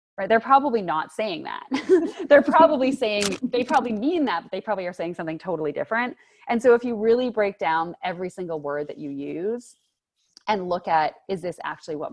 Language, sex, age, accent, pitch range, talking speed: English, female, 30-49, American, 155-230 Hz, 205 wpm